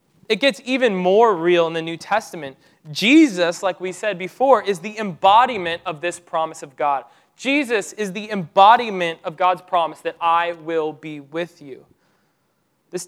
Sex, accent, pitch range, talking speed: male, American, 165-225 Hz, 165 wpm